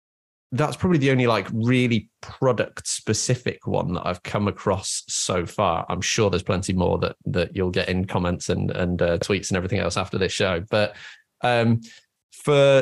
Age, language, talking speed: 20-39, English, 185 wpm